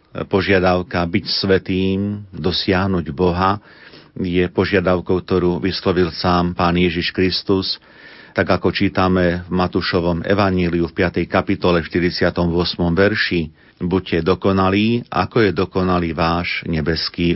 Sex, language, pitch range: male, Slovak, 85-95 Hz